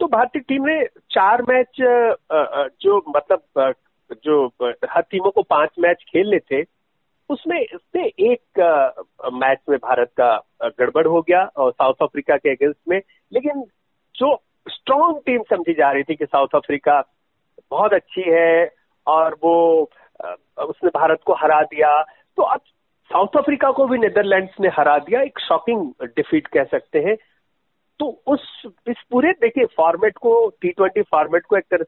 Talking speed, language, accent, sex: 150 wpm, Hindi, native, male